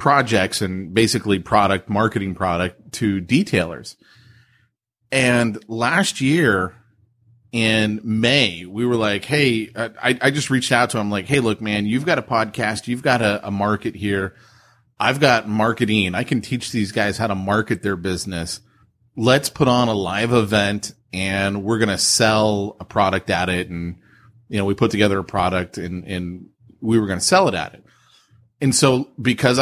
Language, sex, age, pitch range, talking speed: English, male, 30-49, 105-125 Hz, 175 wpm